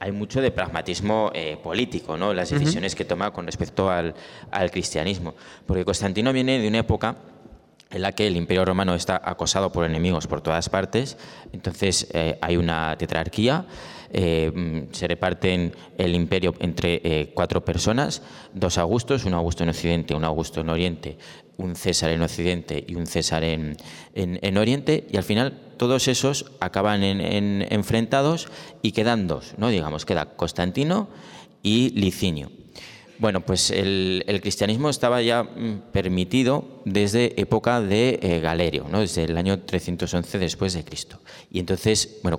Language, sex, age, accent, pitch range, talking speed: Spanish, male, 20-39, Spanish, 85-115 Hz, 160 wpm